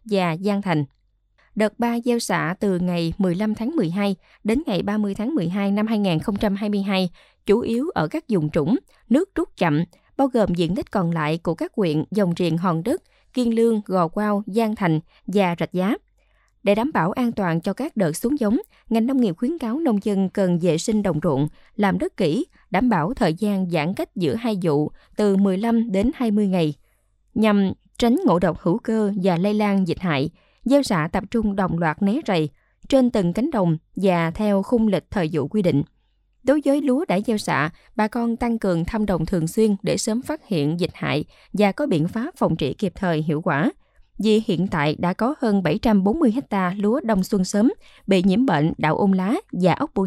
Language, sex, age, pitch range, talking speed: Vietnamese, female, 20-39, 175-230 Hz, 205 wpm